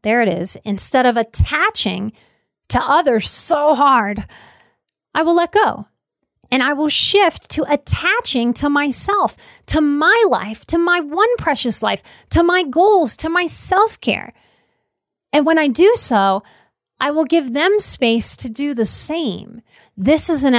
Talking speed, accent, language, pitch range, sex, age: 155 wpm, American, English, 200-300 Hz, female, 30-49